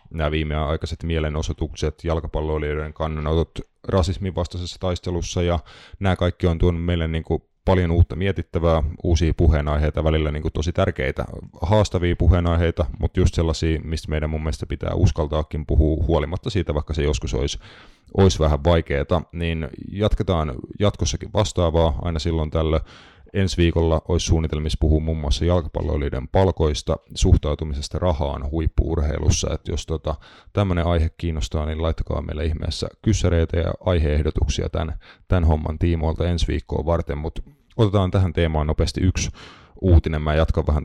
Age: 30-49